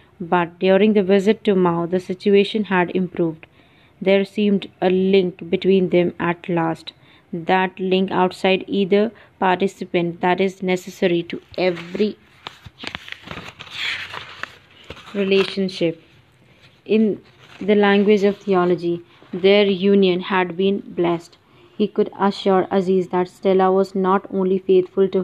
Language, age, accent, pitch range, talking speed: English, 20-39, Indian, 175-195 Hz, 120 wpm